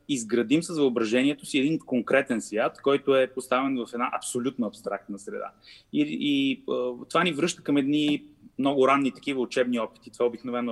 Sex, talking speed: male, 170 wpm